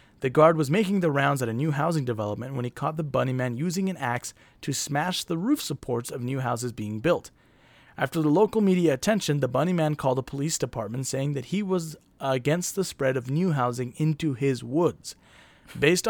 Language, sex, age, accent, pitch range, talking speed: English, male, 30-49, American, 125-165 Hz, 210 wpm